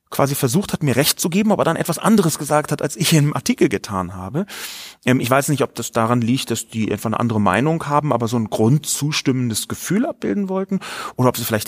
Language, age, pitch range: German, 30-49, 115-170 Hz